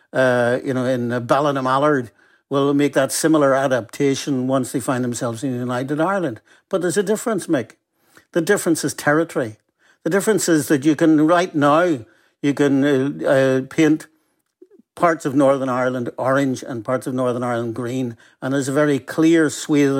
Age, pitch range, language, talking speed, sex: 60-79, 130-160 Hz, English, 175 wpm, male